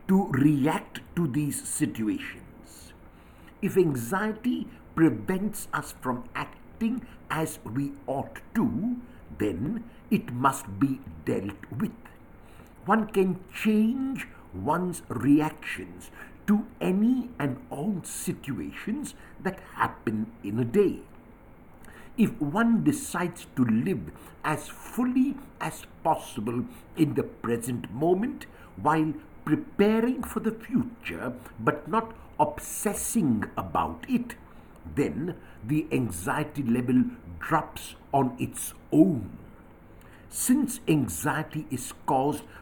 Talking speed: 100 wpm